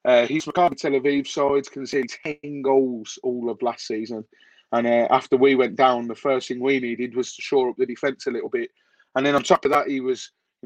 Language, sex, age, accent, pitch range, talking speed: English, male, 30-49, British, 130-170 Hz, 240 wpm